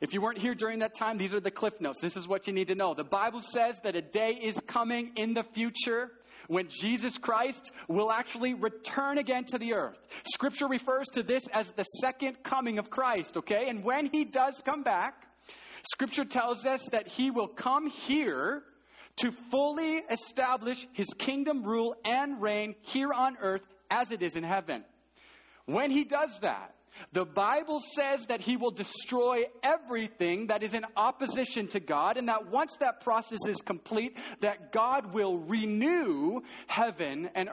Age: 40-59